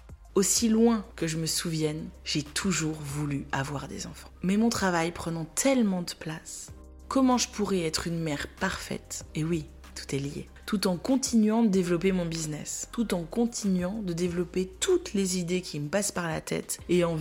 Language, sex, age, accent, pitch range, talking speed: French, female, 20-39, French, 150-195 Hz, 190 wpm